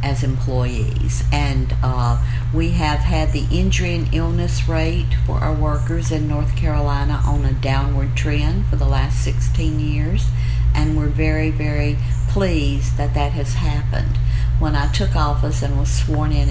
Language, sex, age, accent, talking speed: English, female, 50-69, American, 160 wpm